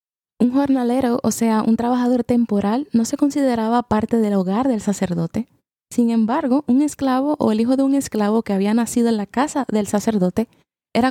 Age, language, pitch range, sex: 20-39, Spanish, 205-245 Hz, female